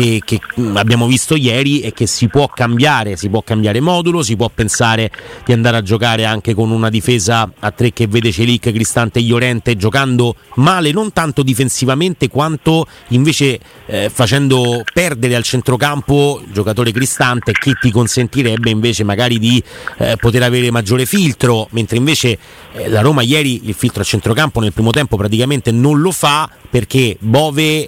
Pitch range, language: 110-130 Hz, Italian